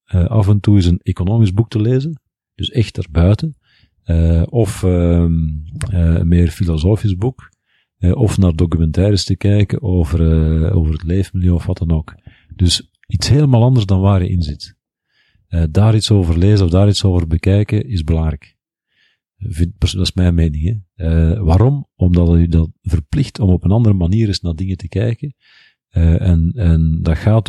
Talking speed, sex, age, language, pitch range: 185 wpm, male, 50-69, Dutch, 85-105 Hz